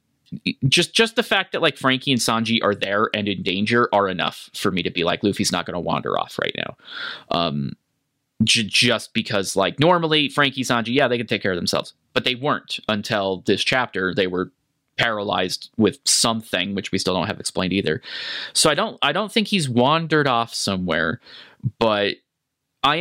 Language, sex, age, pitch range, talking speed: English, male, 30-49, 105-145 Hz, 190 wpm